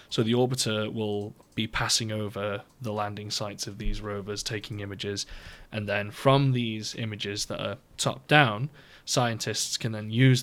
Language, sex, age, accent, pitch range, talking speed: English, male, 20-39, British, 105-125 Hz, 155 wpm